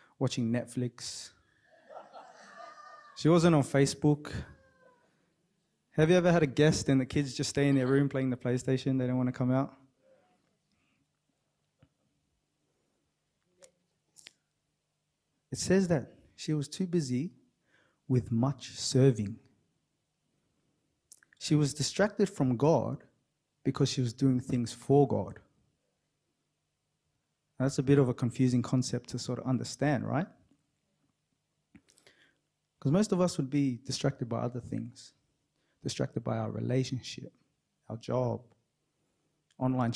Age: 20-39